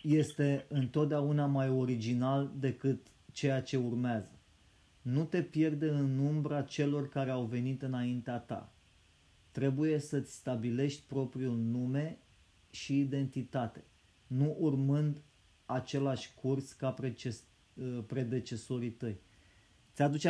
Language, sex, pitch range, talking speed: Romanian, male, 115-140 Hz, 100 wpm